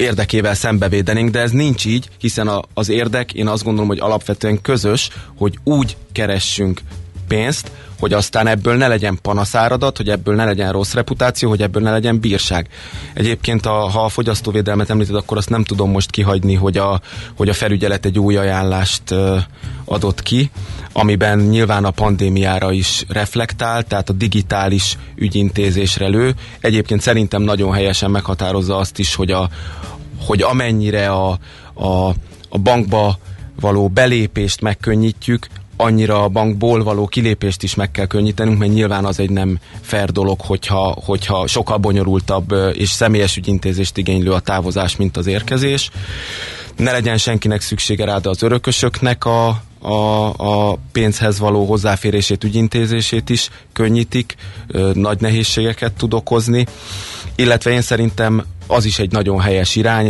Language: Hungarian